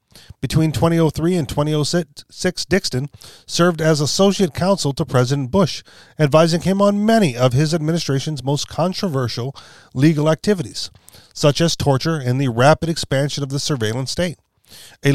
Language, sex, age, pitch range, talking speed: English, male, 40-59, 130-165 Hz, 140 wpm